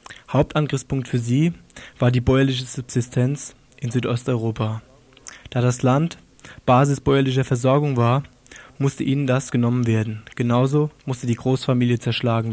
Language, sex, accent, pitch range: German, male, German, 120-135 Hz